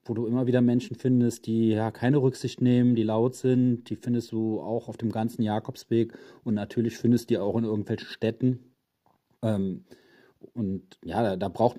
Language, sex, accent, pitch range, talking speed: German, male, German, 105-125 Hz, 190 wpm